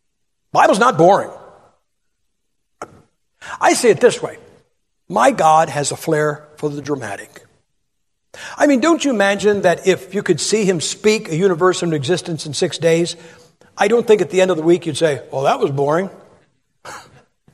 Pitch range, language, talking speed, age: 160-230 Hz, English, 180 wpm, 60-79